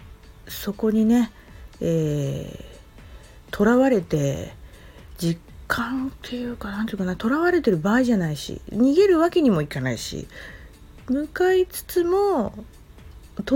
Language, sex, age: Japanese, female, 40-59